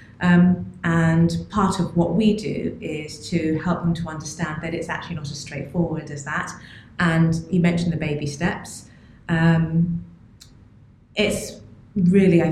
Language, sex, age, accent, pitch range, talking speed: English, female, 30-49, British, 140-170 Hz, 150 wpm